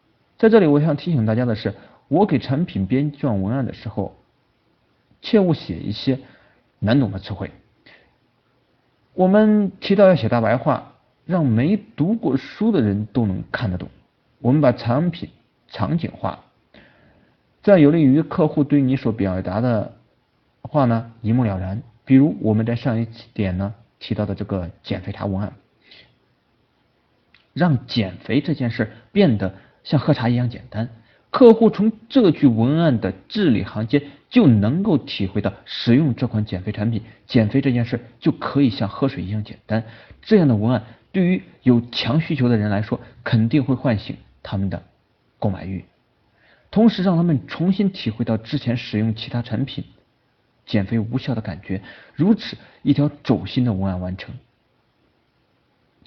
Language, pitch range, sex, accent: Chinese, 105-145 Hz, male, native